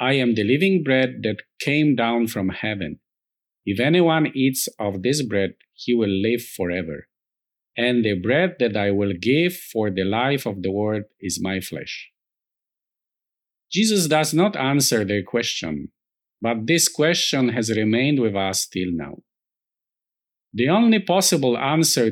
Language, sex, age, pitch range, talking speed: English, male, 50-69, 110-150 Hz, 150 wpm